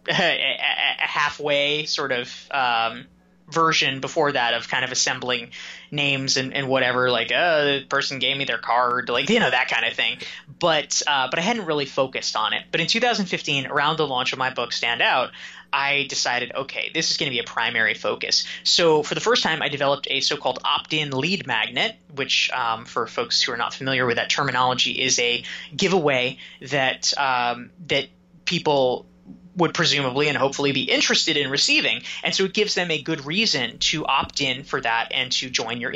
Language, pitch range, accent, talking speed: English, 130-180 Hz, American, 195 wpm